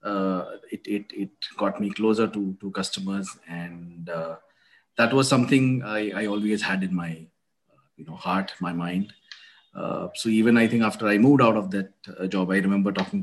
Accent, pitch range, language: Indian, 95-120 Hz, English